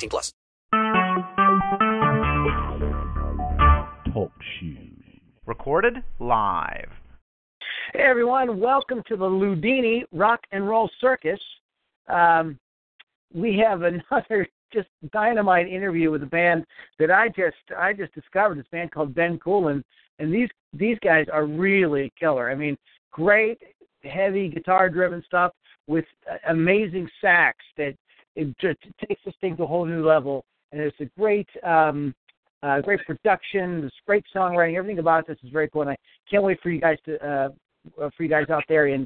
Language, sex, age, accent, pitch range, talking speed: English, male, 50-69, American, 150-185 Hz, 145 wpm